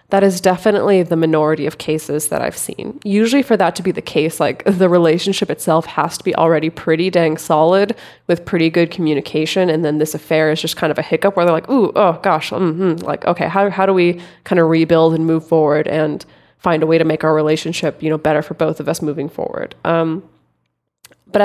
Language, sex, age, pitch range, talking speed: English, female, 20-39, 160-195 Hz, 225 wpm